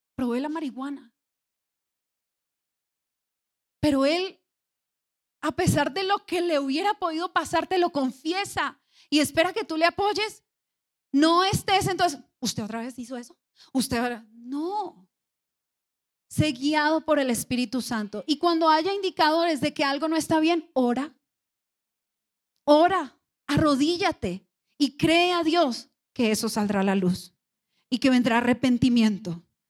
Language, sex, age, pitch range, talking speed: Spanish, female, 30-49, 245-315 Hz, 135 wpm